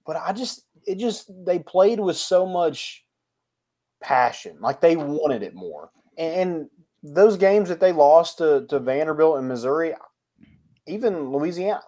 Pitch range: 135-180 Hz